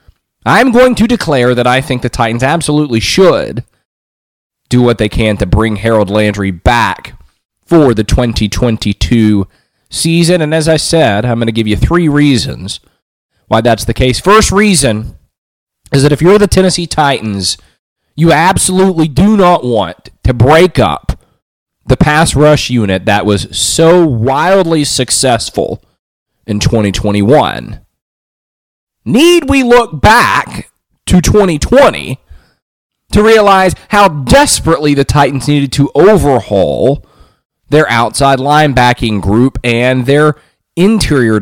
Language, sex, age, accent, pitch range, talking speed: English, male, 30-49, American, 110-165 Hz, 130 wpm